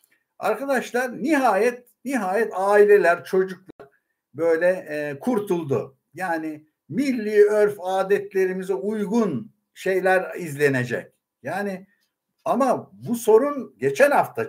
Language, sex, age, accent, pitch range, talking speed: Turkish, male, 60-79, native, 155-210 Hz, 85 wpm